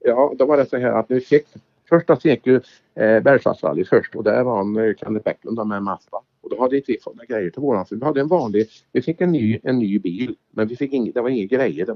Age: 50-69